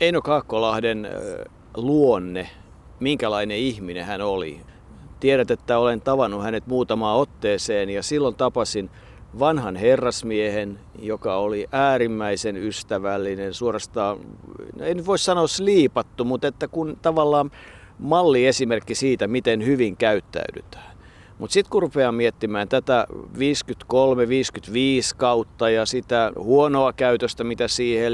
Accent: native